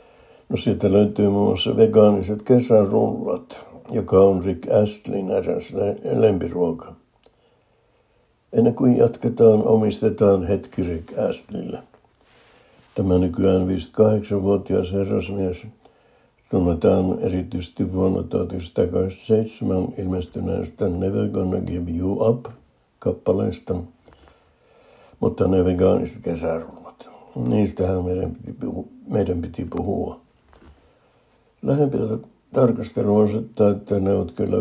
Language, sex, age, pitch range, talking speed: Finnish, male, 60-79, 90-105 Hz, 85 wpm